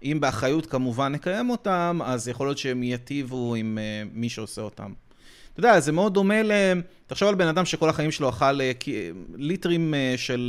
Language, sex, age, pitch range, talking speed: Hebrew, male, 30-49, 125-170 Hz, 200 wpm